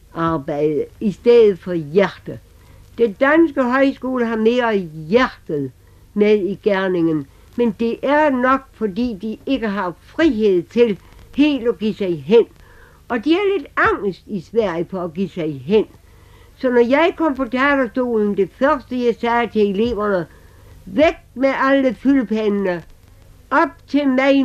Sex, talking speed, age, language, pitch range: female, 145 wpm, 60-79, Danish, 190-265 Hz